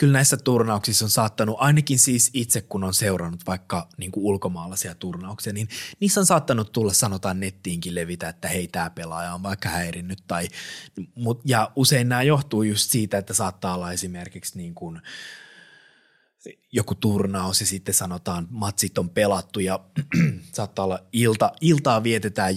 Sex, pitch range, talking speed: male, 95-130 Hz, 155 wpm